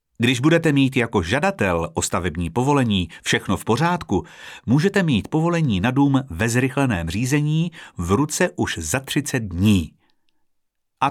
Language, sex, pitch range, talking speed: Czech, male, 95-140 Hz, 140 wpm